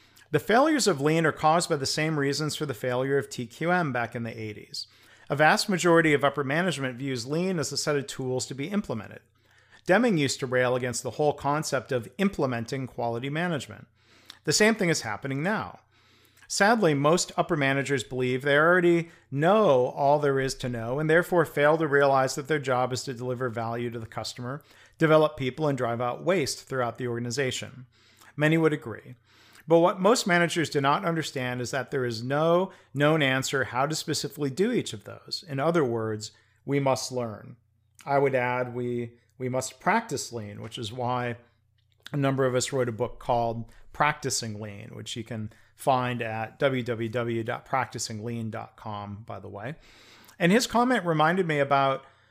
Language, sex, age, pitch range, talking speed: English, male, 40-59, 115-150 Hz, 180 wpm